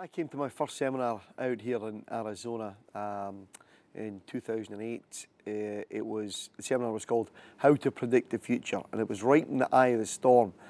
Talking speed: 195 wpm